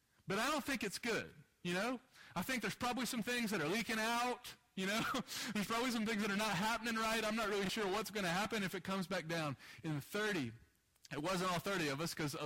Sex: male